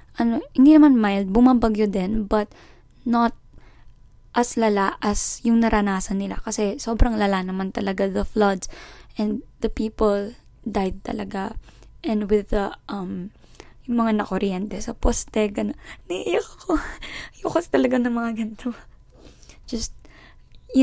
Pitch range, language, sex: 200-230 Hz, Filipino, female